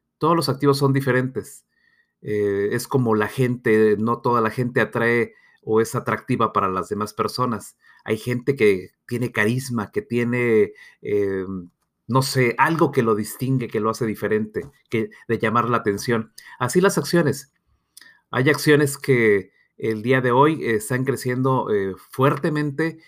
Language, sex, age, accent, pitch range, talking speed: Spanish, male, 40-59, Mexican, 110-140 Hz, 155 wpm